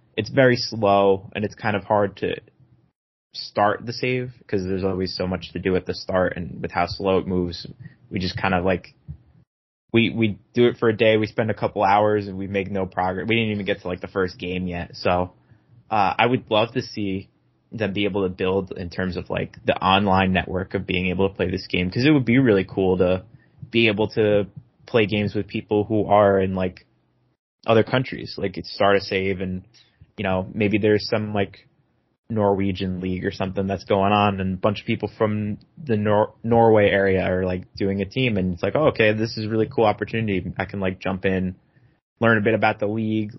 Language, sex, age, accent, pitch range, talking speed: English, male, 20-39, American, 95-110 Hz, 225 wpm